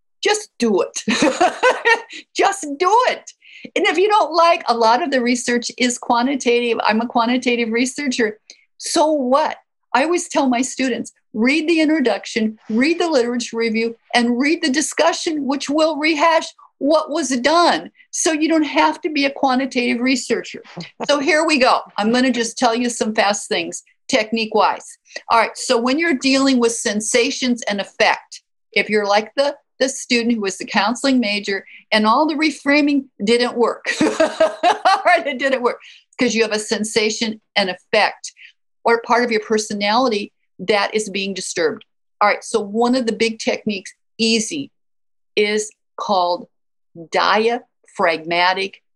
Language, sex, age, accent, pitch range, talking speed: English, female, 50-69, American, 225-305 Hz, 155 wpm